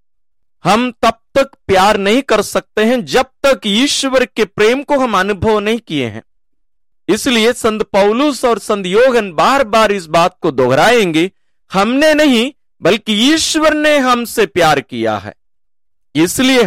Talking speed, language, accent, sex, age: 140 wpm, English, Indian, male, 50-69